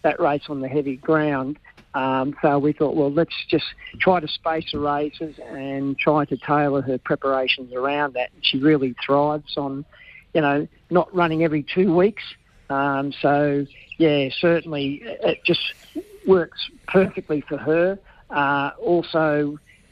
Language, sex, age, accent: English, male, 50-69, Australian